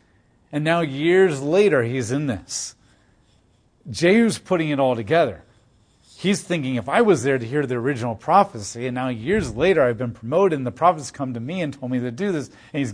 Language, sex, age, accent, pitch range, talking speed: English, male, 40-59, American, 125-170 Hz, 205 wpm